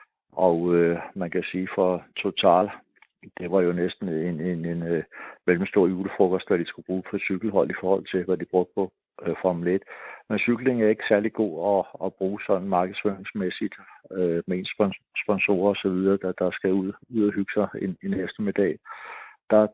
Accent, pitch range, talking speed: native, 90-100 Hz, 185 wpm